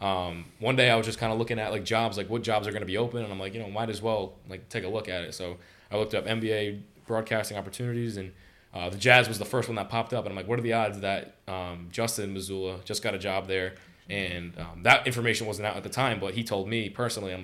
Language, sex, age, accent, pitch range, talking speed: English, male, 20-39, American, 95-115 Hz, 285 wpm